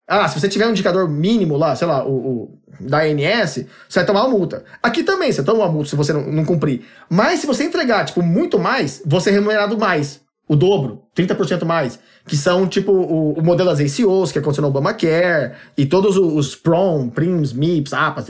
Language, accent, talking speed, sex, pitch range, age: Portuguese, Brazilian, 215 wpm, male, 150-210 Hz, 20-39